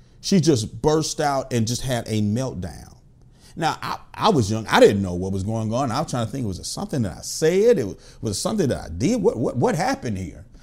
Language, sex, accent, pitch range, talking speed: English, male, American, 120-160 Hz, 255 wpm